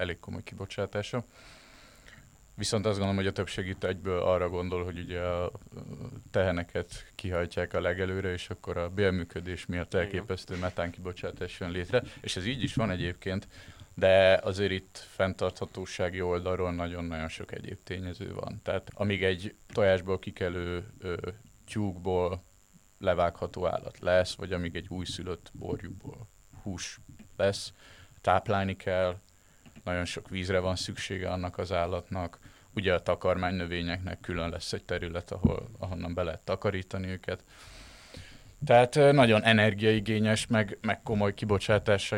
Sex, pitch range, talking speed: male, 90-105 Hz, 130 wpm